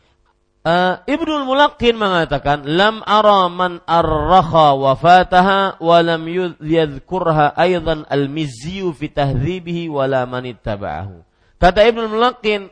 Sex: male